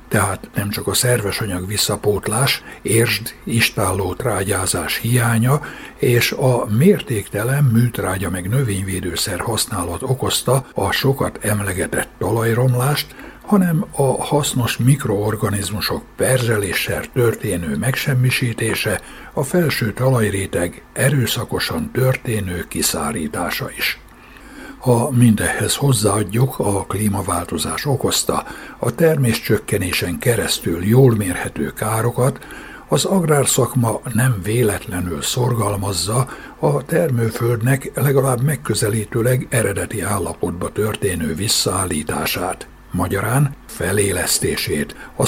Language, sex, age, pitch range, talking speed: Hungarian, male, 60-79, 105-130 Hz, 85 wpm